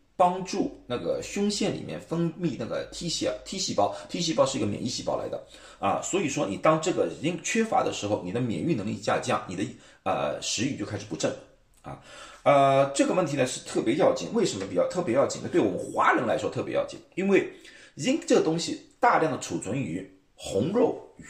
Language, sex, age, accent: Chinese, male, 30-49, native